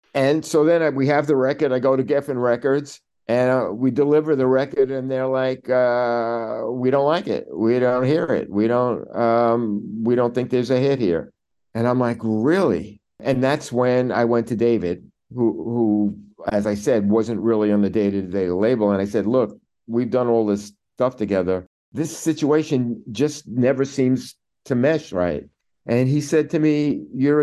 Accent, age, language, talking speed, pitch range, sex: American, 50-69, English, 190 wpm, 110-135 Hz, male